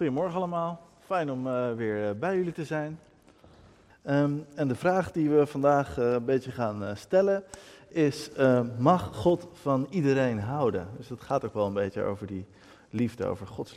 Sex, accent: male, Dutch